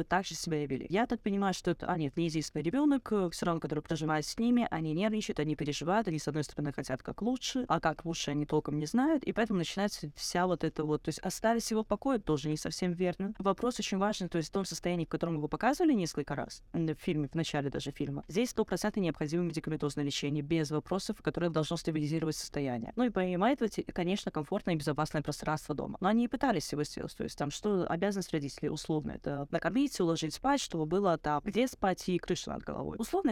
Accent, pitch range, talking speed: native, 155-205 Hz, 220 wpm